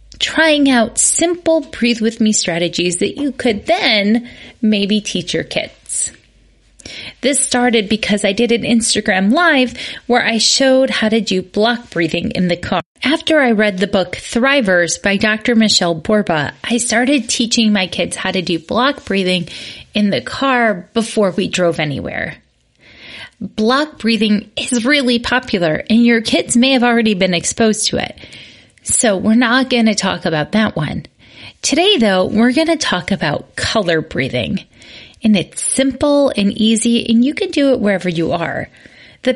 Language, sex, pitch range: English, female, 190-255 Hz